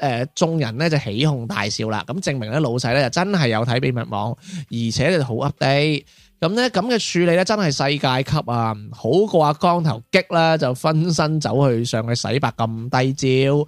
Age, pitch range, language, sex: 20-39, 120-165 Hz, Chinese, male